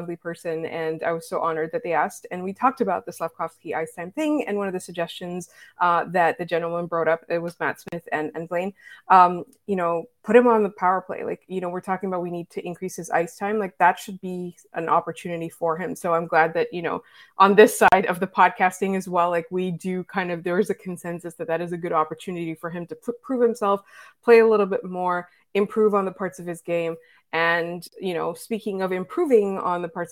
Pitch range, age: 175-235 Hz, 20-39